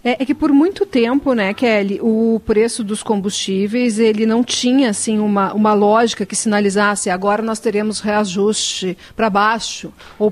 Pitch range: 205-250 Hz